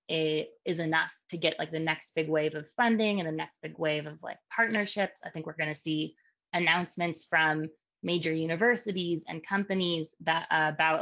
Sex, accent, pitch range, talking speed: female, American, 155-180 Hz, 190 wpm